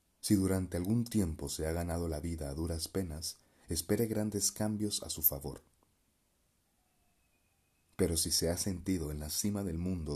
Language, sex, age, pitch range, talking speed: Spanish, male, 40-59, 80-100 Hz, 165 wpm